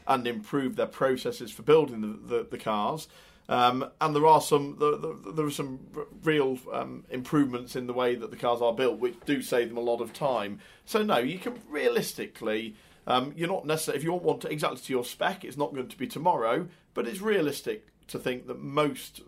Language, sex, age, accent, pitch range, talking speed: English, male, 40-59, British, 120-150 Hz, 220 wpm